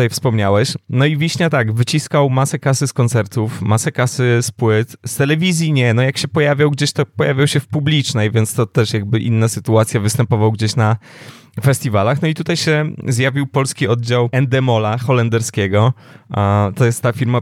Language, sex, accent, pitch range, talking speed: Polish, male, native, 110-140 Hz, 175 wpm